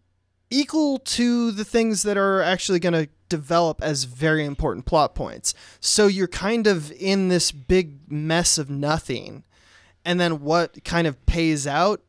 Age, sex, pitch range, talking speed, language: 20-39, male, 140-180 Hz, 160 wpm, English